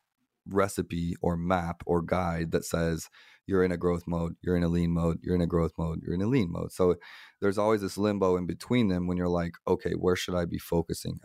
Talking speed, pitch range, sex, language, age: 235 wpm, 85-95 Hz, male, English, 20-39